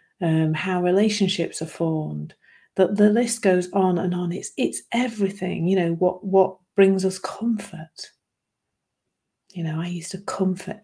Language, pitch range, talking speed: English, 170-205 Hz, 155 wpm